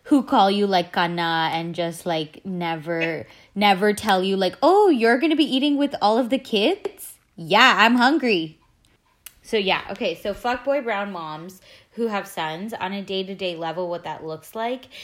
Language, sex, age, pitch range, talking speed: English, female, 20-39, 165-200 Hz, 185 wpm